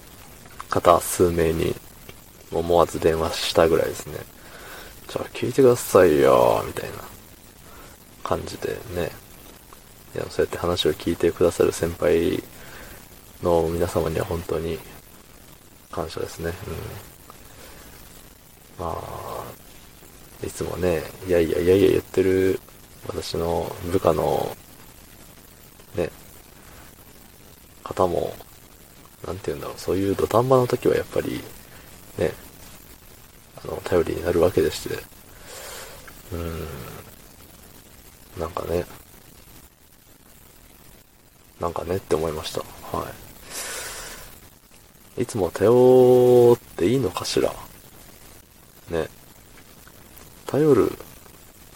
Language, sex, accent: Japanese, male, native